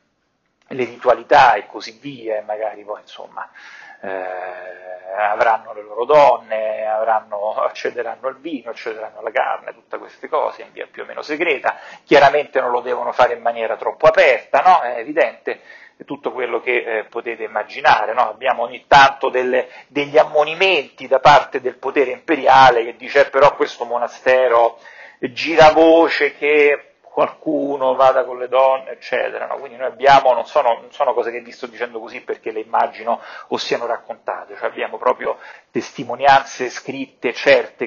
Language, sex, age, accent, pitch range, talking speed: Italian, male, 40-59, native, 110-155 Hz, 160 wpm